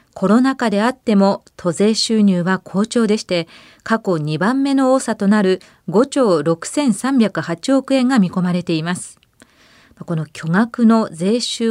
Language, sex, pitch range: Japanese, female, 185-255 Hz